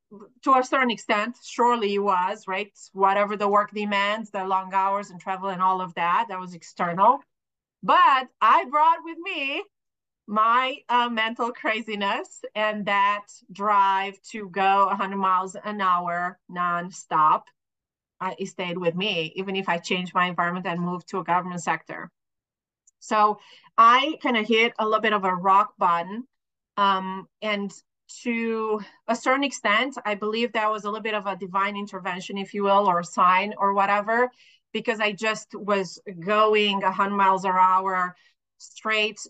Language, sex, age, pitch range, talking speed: English, female, 30-49, 185-220 Hz, 165 wpm